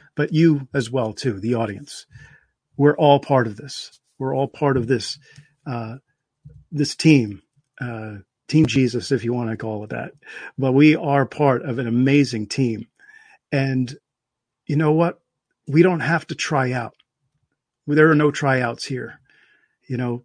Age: 40-59